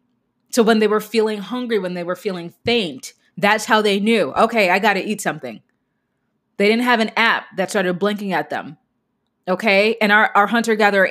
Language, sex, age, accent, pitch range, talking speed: English, female, 20-39, American, 185-215 Hz, 200 wpm